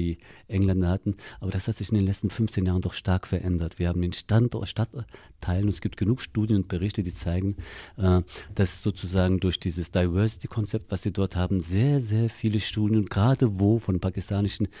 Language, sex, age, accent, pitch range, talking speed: German, male, 40-59, German, 95-110 Hz, 185 wpm